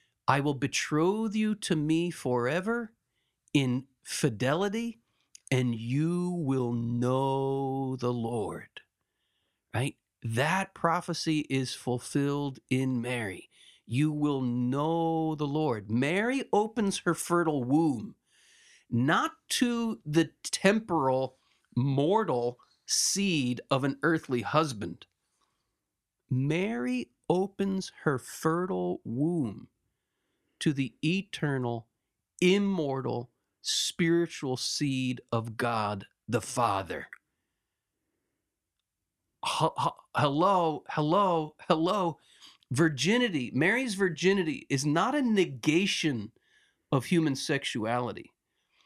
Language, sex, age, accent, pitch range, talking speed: English, male, 50-69, American, 130-185 Hz, 85 wpm